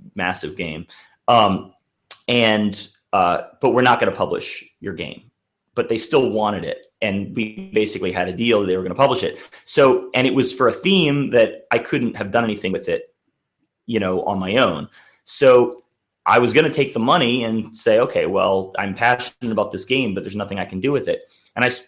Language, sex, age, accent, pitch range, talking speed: English, male, 30-49, American, 100-130 Hz, 210 wpm